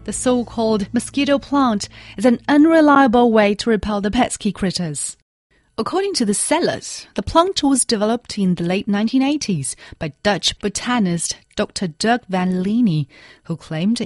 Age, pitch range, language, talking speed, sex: 30-49, 180-255 Hz, English, 145 wpm, female